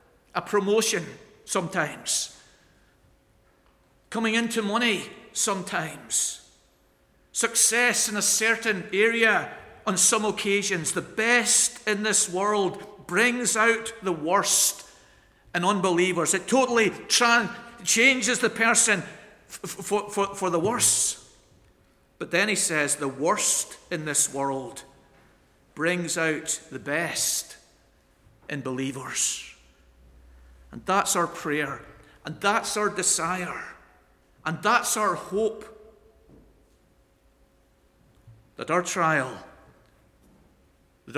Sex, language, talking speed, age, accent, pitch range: male, English, 100 wpm, 50-69, British, 125-205 Hz